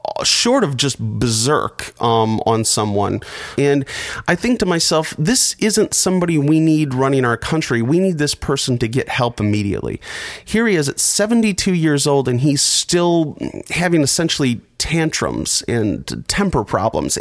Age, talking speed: 30-49, 155 wpm